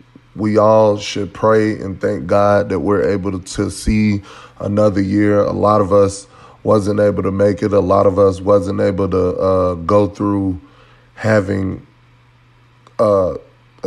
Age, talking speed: 20-39, 150 wpm